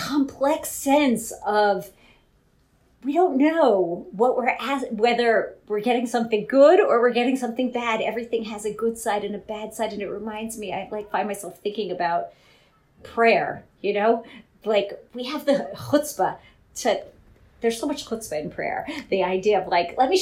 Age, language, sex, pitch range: 40-59, English, female, 210-295 Hz